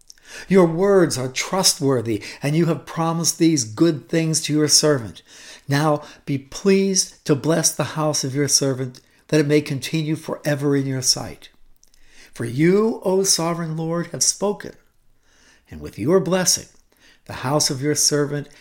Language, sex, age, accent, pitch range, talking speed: English, male, 60-79, American, 135-170 Hz, 155 wpm